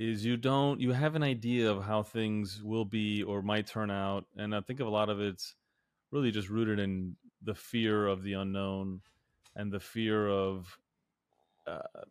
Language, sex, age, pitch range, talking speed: English, male, 30-49, 100-115 Hz, 185 wpm